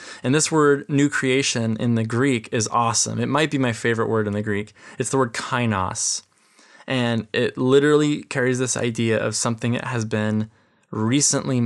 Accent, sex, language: American, male, English